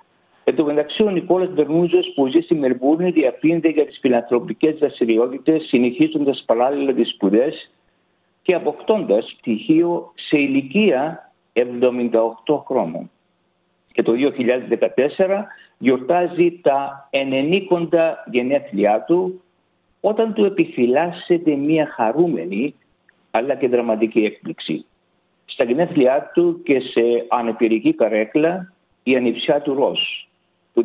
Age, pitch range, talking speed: 60-79, 125-170 Hz, 105 wpm